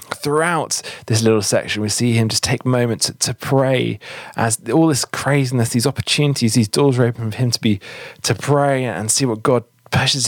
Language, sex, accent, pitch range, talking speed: English, male, British, 110-140 Hz, 195 wpm